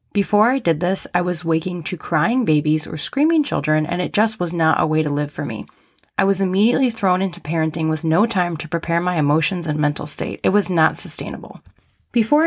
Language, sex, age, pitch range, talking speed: English, female, 20-39, 165-205 Hz, 215 wpm